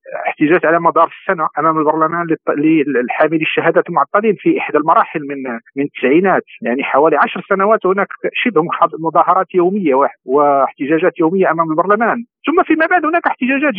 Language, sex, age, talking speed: Arabic, male, 50-69, 140 wpm